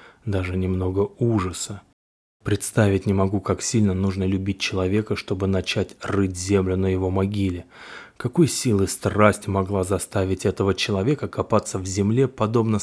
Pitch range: 95-115 Hz